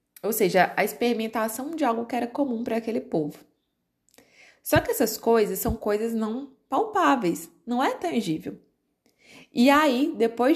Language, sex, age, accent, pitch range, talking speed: Portuguese, female, 20-39, Brazilian, 175-245 Hz, 150 wpm